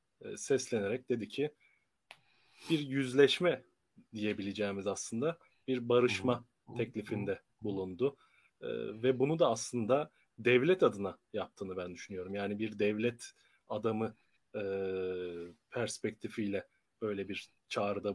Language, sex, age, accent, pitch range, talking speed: Turkish, male, 30-49, native, 105-130 Hz, 100 wpm